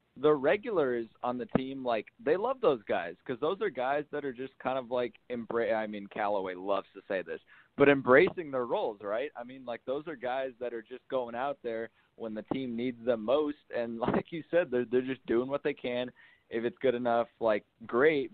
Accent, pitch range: American, 105-125 Hz